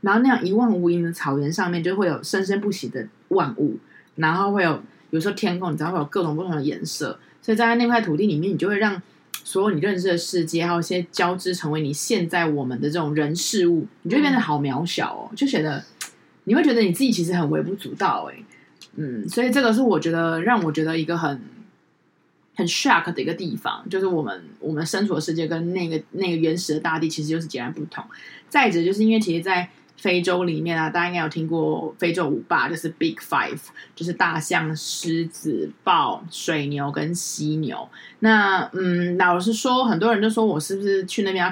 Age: 20-39